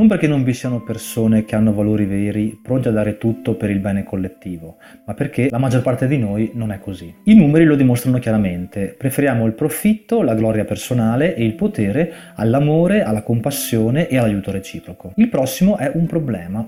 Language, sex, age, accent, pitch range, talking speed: Italian, male, 30-49, native, 105-150 Hz, 190 wpm